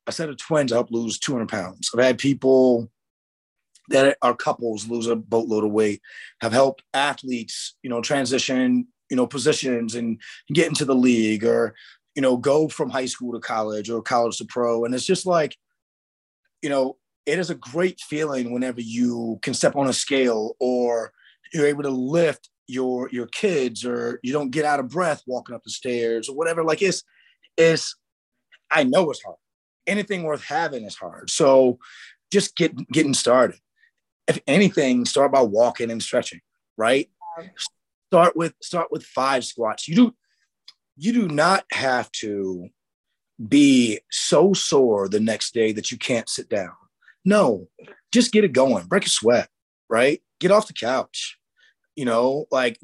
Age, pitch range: 30-49, 115-175 Hz